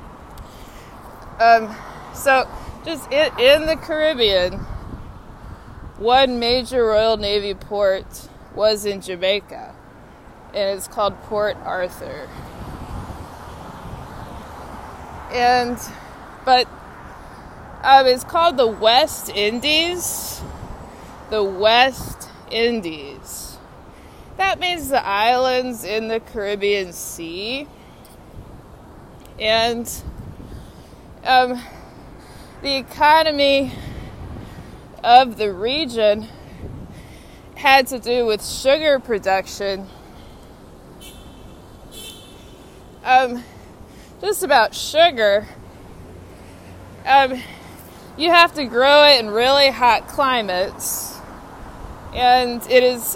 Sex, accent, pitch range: female, American, 210-270 Hz